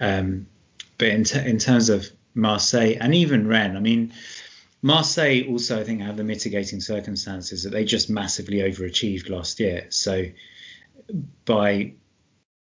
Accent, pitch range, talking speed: British, 95-115 Hz, 140 wpm